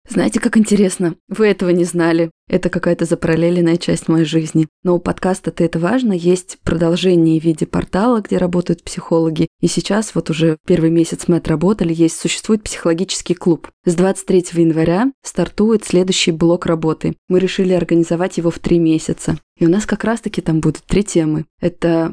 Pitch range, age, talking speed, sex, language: 170-205 Hz, 20-39, 170 wpm, female, Russian